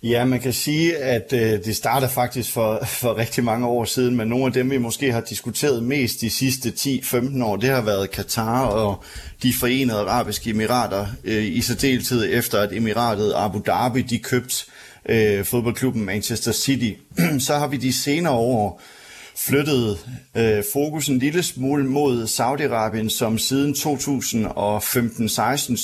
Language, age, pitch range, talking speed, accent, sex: Danish, 30-49, 110-130 Hz, 160 wpm, native, male